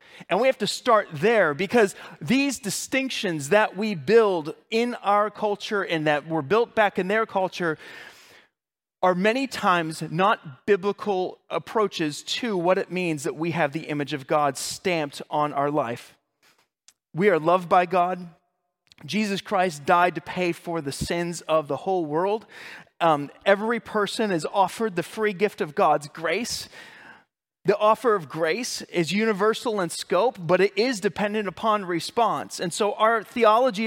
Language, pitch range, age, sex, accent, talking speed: English, 160-215 Hz, 30-49, male, American, 160 wpm